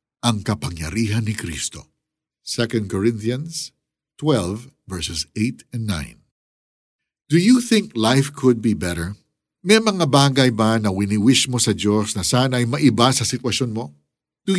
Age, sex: 50-69, male